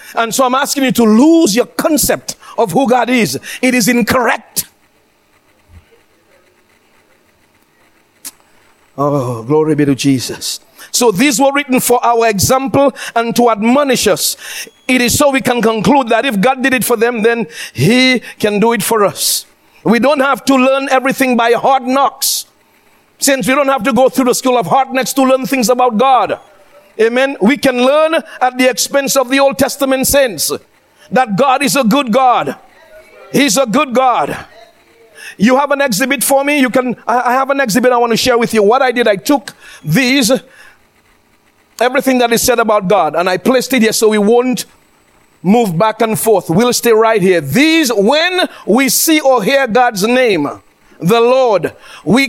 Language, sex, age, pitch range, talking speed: English, male, 50-69, 230-270 Hz, 180 wpm